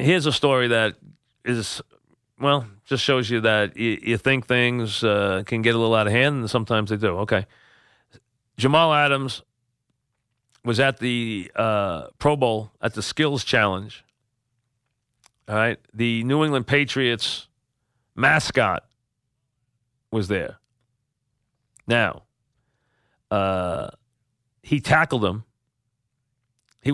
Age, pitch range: 40-59, 105-130 Hz